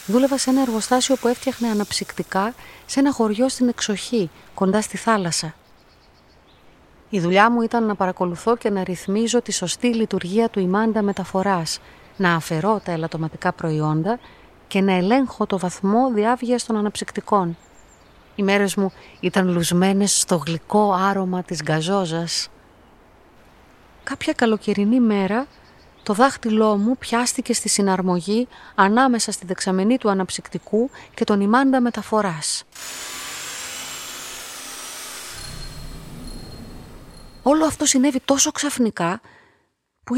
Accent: native